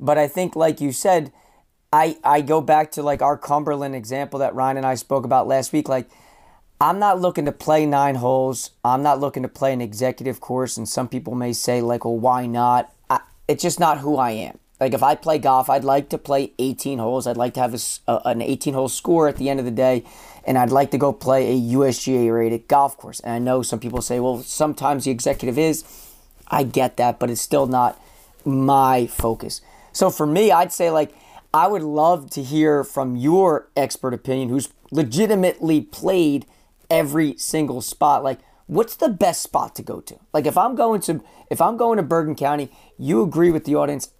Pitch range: 130-155 Hz